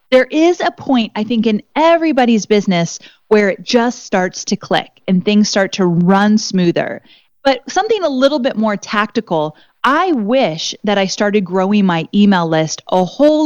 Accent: American